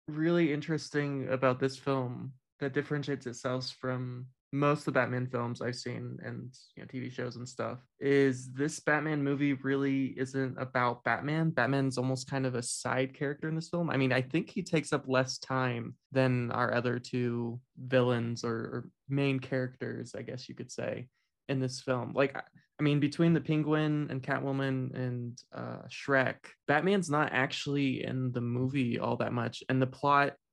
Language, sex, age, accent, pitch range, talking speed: English, male, 20-39, American, 125-140 Hz, 175 wpm